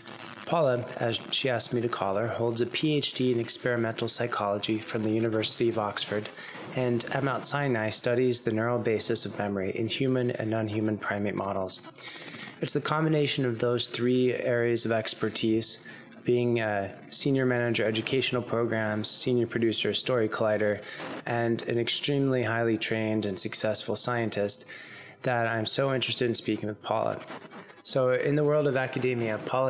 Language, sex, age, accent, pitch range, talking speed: English, male, 20-39, American, 110-125 Hz, 155 wpm